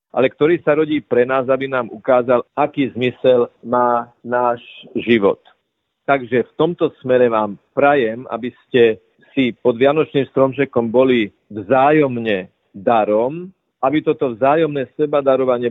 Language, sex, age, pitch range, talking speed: Slovak, male, 40-59, 125-145 Hz, 125 wpm